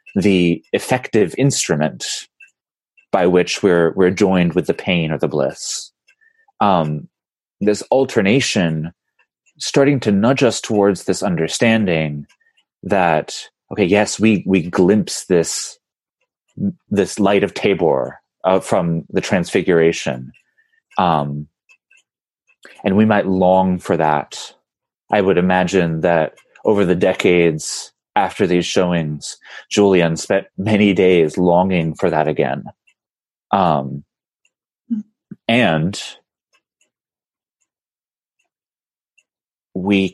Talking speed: 100 wpm